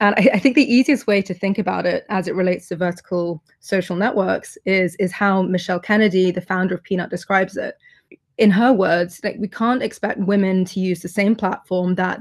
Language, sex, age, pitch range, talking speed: English, female, 20-39, 180-210 Hz, 205 wpm